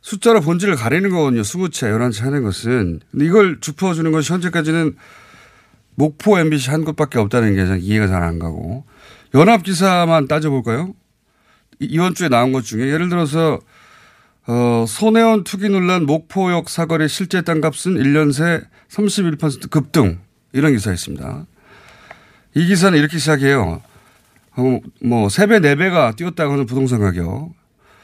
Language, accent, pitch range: Korean, native, 125-180 Hz